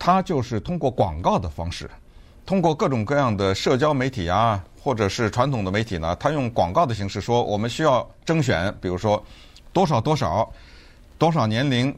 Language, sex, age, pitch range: Chinese, male, 50-69, 95-140 Hz